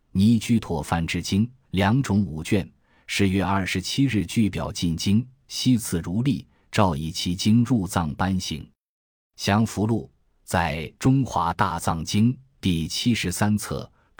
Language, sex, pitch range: Chinese, male, 85-110 Hz